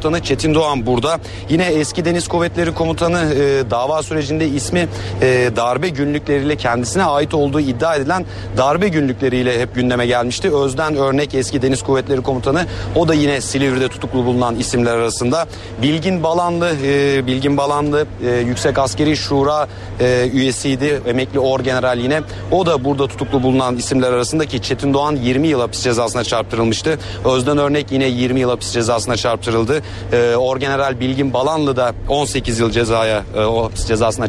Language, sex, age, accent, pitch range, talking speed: Turkish, male, 40-59, native, 120-150 Hz, 150 wpm